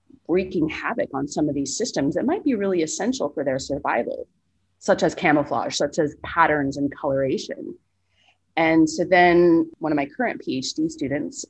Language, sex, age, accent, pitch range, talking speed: English, female, 30-49, American, 145-200 Hz, 165 wpm